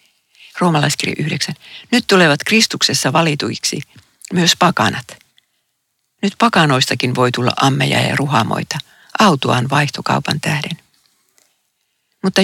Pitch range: 135-180 Hz